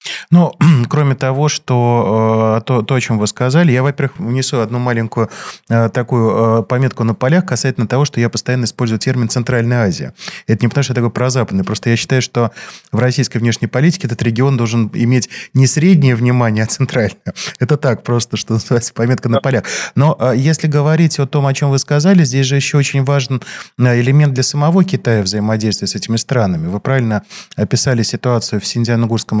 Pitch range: 115-135 Hz